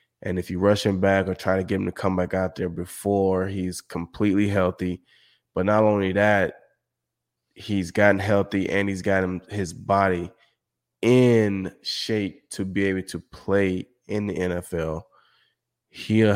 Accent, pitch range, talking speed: American, 90-105 Hz, 160 wpm